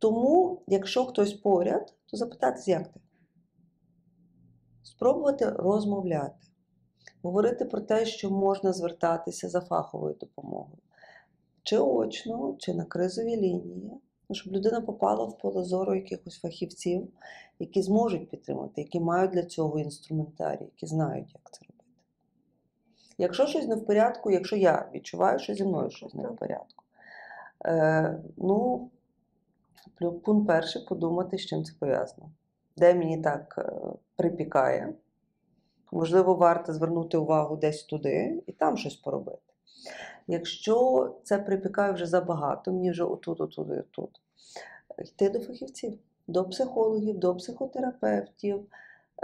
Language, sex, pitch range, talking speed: Ukrainian, female, 170-220 Hz, 125 wpm